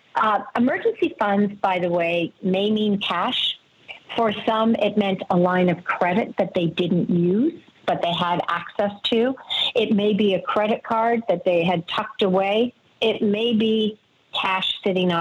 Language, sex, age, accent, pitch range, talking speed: English, female, 50-69, American, 175-220 Hz, 165 wpm